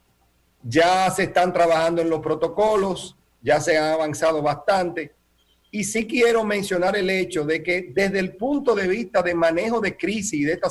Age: 50-69